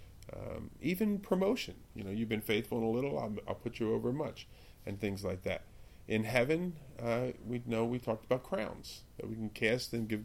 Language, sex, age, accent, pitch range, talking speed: English, male, 40-59, American, 105-120 Hz, 210 wpm